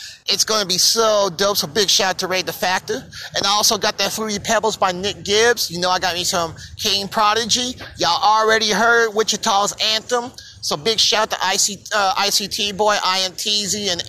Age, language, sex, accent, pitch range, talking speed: 30-49, English, male, American, 155-210 Hz, 215 wpm